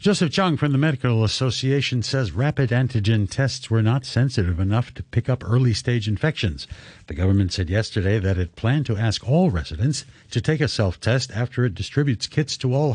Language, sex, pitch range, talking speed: English, male, 105-135 Hz, 190 wpm